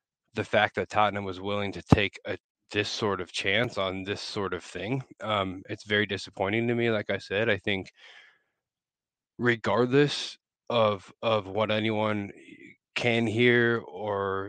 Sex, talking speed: male, 155 wpm